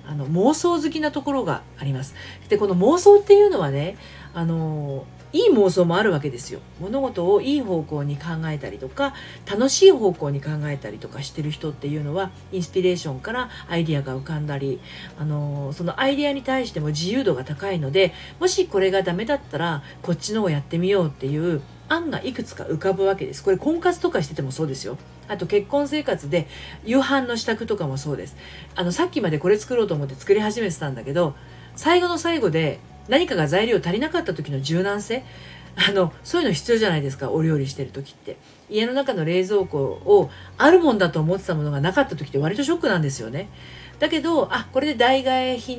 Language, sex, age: Japanese, female, 40-59